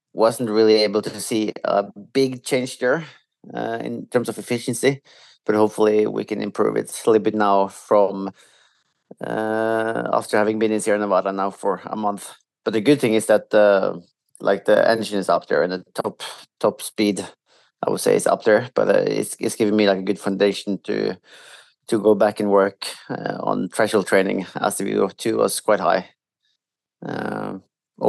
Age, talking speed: 30-49, 190 wpm